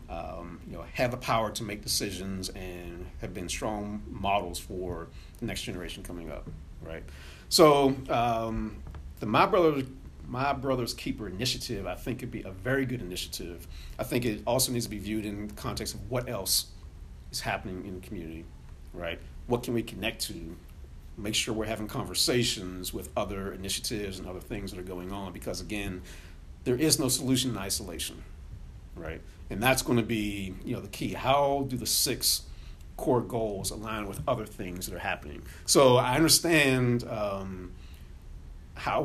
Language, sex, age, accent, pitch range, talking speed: English, male, 50-69, American, 90-120 Hz, 175 wpm